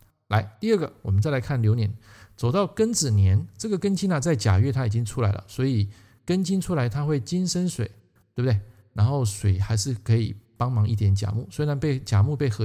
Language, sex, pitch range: Chinese, male, 105-140 Hz